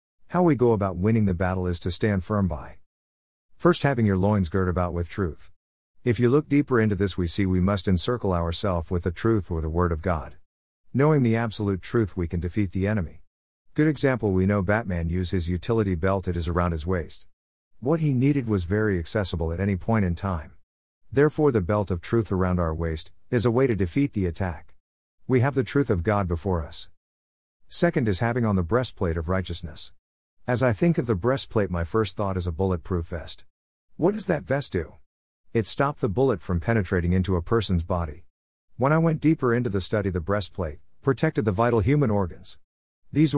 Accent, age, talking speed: American, 50-69, 205 wpm